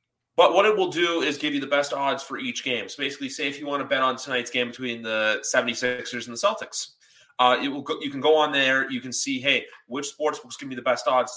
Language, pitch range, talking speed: English, 120-145 Hz, 260 wpm